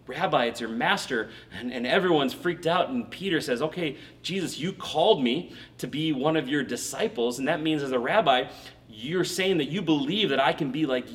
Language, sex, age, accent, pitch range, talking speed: English, male, 30-49, American, 125-180 Hz, 210 wpm